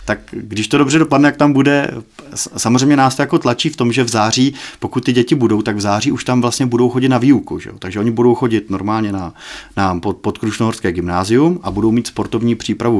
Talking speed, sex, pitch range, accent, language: 225 wpm, male, 105-120 Hz, native, Czech